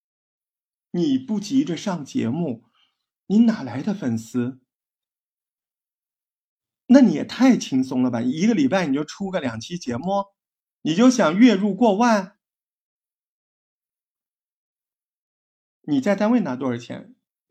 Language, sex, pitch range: Chinese, male, 135-225 Hz